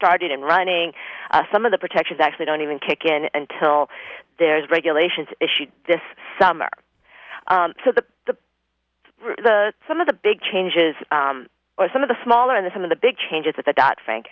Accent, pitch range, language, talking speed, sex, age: American, 150-205 Hz, English, 185 wpm, female, 40-59